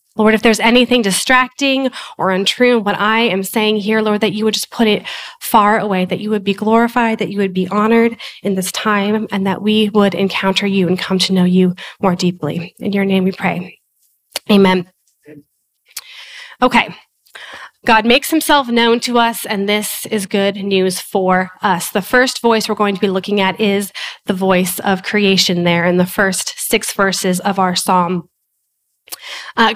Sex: female